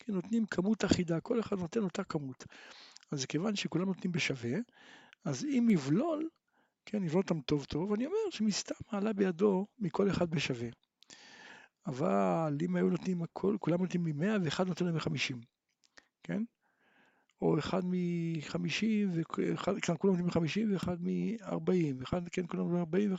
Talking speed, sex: 140 wpm, male